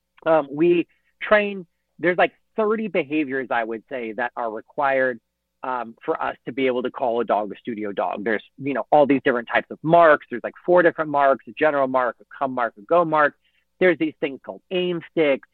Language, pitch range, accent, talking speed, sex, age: English, 125-165 Hz, American, 210 wpm, male, 40-59